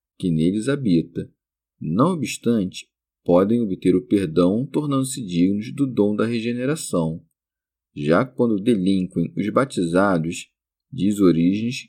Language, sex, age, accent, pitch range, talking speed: Portuguese, male, 40-59, Brazilian, 85-125 Hz, 110 wpm